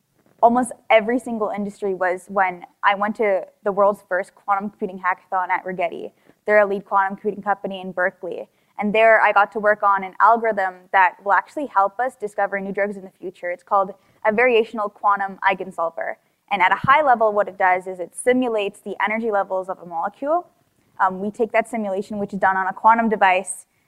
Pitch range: 190-220 Hz